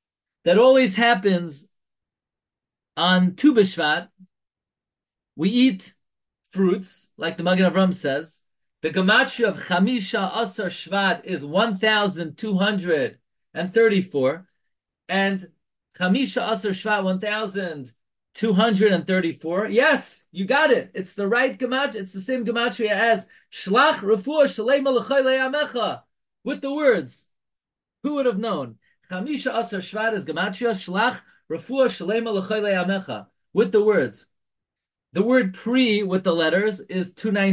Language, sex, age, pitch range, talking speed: English, male, 30-49, 180-225 Hz, 115 wpm